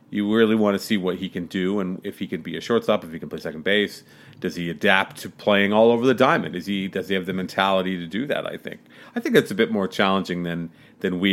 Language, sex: English, male